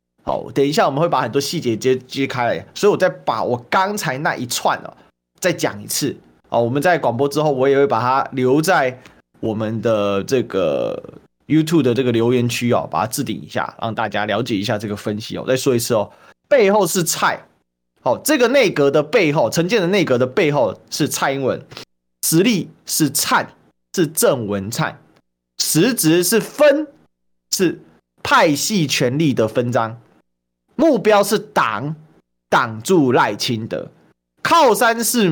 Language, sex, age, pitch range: Chinese, male, 30-49, 110-175 Hz